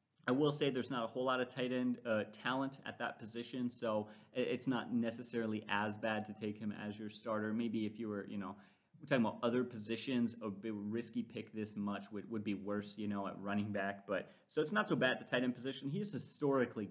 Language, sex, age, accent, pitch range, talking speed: English, male, 30-49, American, 110-135 Hz, 230 wpm